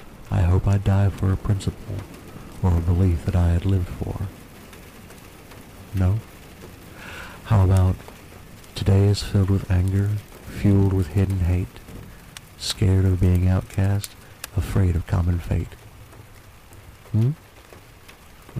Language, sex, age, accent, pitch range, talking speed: English, male, 60-79, American, 95-105 Hz, 120 wpm